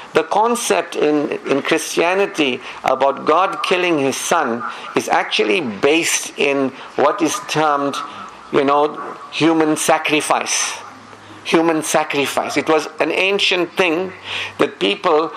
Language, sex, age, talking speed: English, male, 50-69, 115 wpm